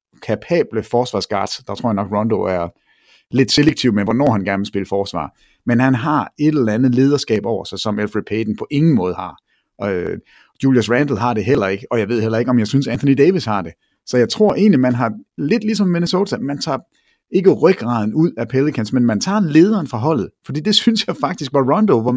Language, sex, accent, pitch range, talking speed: English, male, Danish, 115-150 Hz, 220 wpm